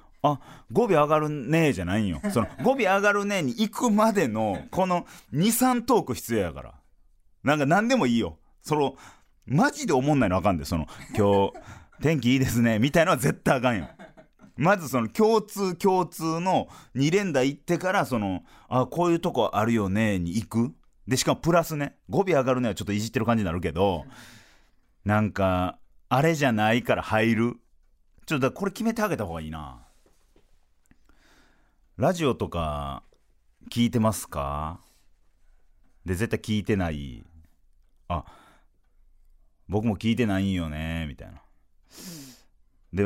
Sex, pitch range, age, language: male, 85-140 Hz, 30-49, Japanese